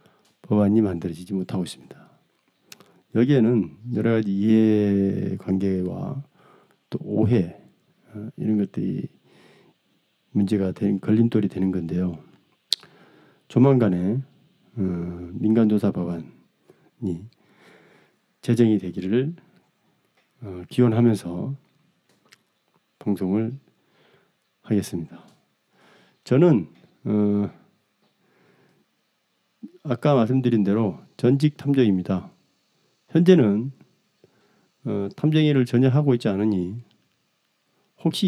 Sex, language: male, Korean